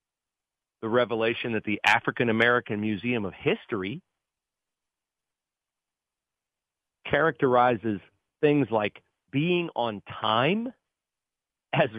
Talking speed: 75 wpm